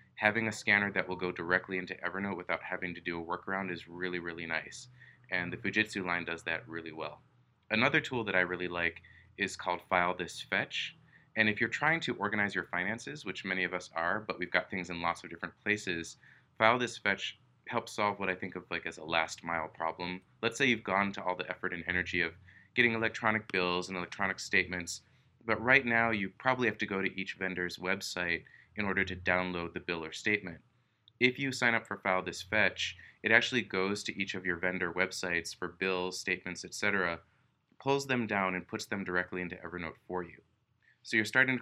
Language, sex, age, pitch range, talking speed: English, male, 20-39, 90-110 Hz, 215 wpm